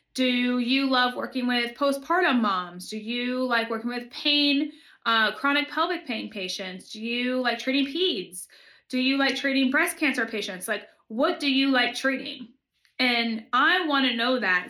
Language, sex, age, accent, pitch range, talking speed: English, female, 20-39, American, 210-255 Hz, 170 wpm